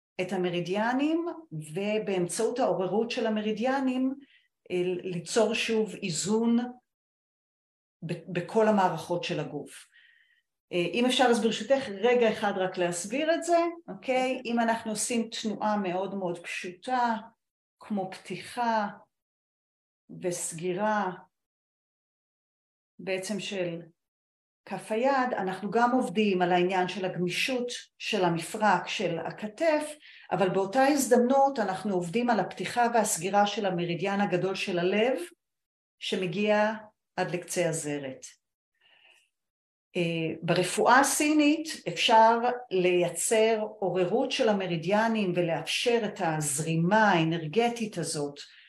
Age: 40-59